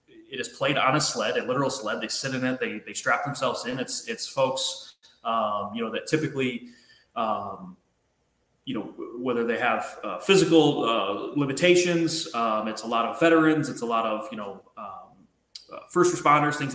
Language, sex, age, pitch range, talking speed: English, male, 20-39, 125-175 Hz, 190 wpm